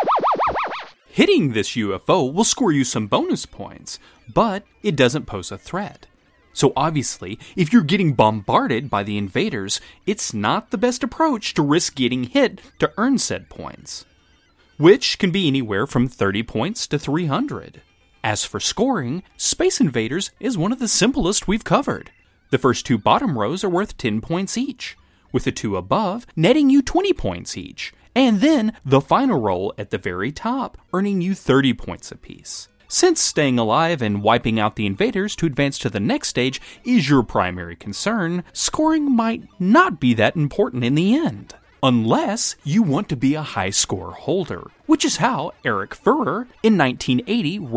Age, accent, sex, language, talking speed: 30-49, American, male, English, 170 wpm